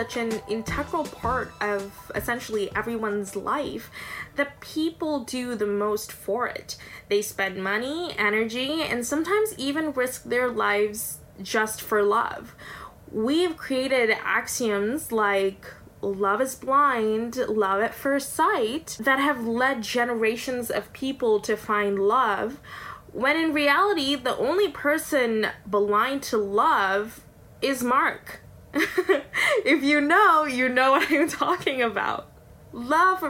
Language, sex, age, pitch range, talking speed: English, female, 10-29, 220-295 Hz, 125 wpm